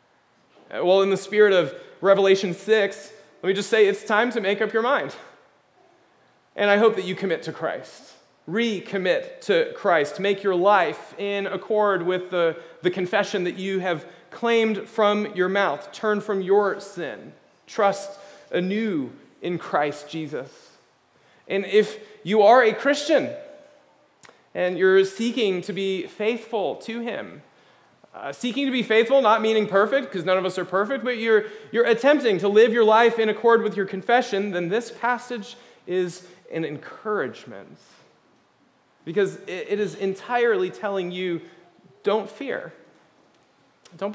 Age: 30-49